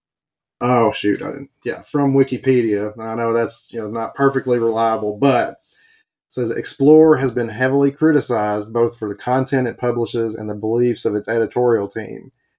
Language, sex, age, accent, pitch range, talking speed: English, male, 30-49, American, 110-135 Hz, 170 wpm